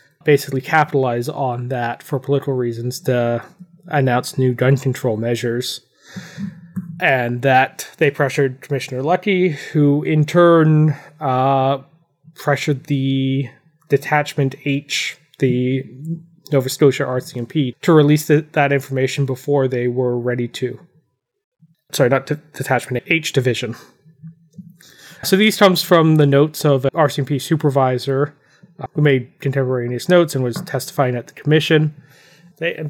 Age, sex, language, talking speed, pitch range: 20-39, male, English, 125 wpm, 135-160 Hz